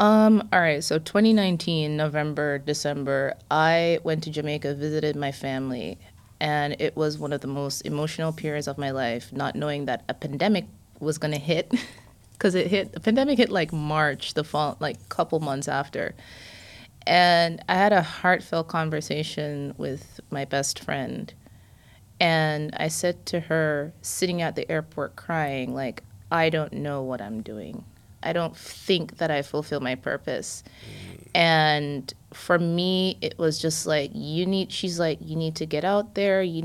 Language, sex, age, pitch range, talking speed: English, female, 20-39, 140-175 Hz, 165 wpm